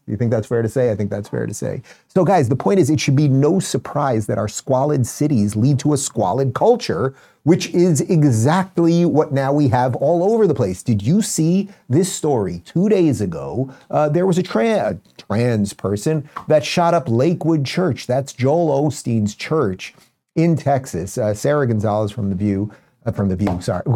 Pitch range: 115-155 Hz